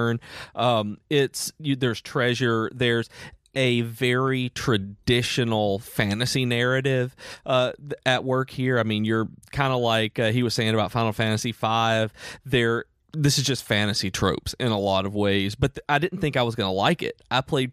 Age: 30-49